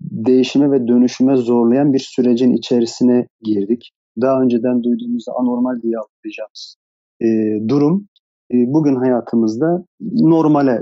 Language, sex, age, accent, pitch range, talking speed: Turkish, male, 40-59, native, 115-140 Hz, 100 wpm